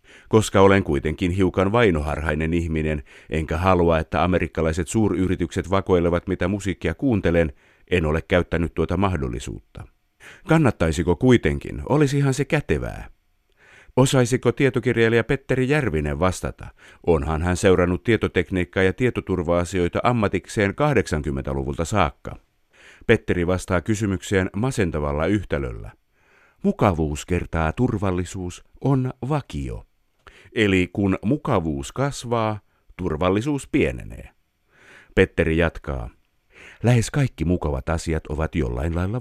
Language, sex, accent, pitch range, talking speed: Finnish, male, native, 80-110 Hz, 100 wpm